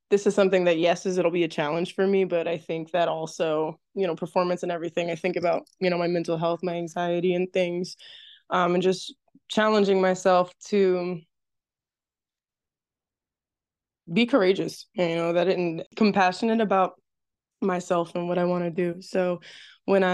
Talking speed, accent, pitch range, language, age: 170 wpm, American, 170-195 Hz, English, 20-39